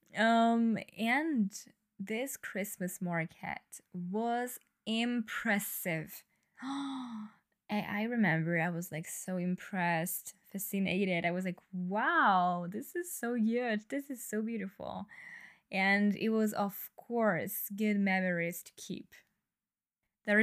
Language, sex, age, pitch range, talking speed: English, female, 10-29, 195-235 Hz, 110 wpm